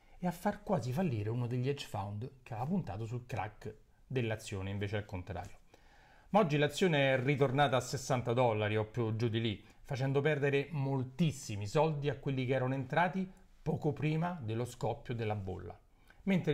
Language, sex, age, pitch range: Italian, male, 40-59, 110-150 Hz